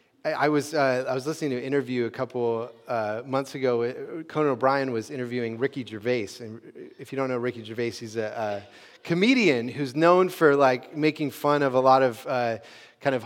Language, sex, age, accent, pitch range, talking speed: English, male, 30-49, American, 130-195 Hz, 200 wpm